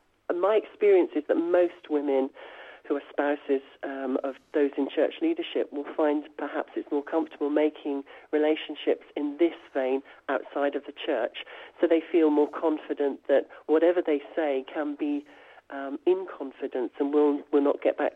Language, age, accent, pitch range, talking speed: English, 40-59, British, 145-190 Hz, 165 wpm